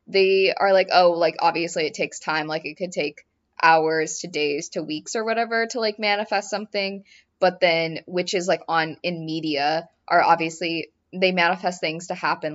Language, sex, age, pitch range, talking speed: English, female, 20-39, 165-220 Hz, 180 wpm